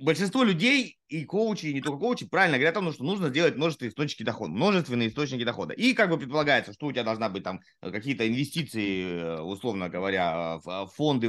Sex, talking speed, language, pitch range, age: male, 195 wpm, Russian, 120-190 Hz, 20-39